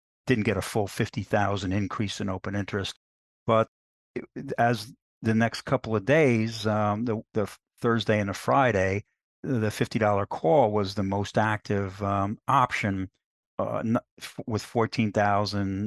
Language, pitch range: English, 100-120 Hz